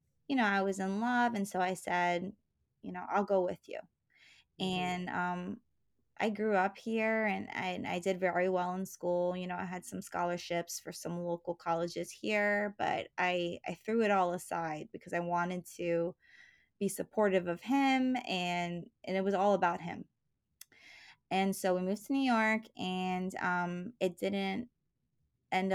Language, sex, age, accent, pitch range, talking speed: English, female, 20-39, American, 175-195 Hz, 175 wpm